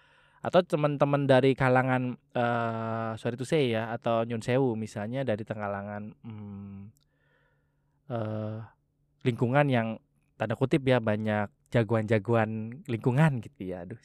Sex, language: male, Indonesian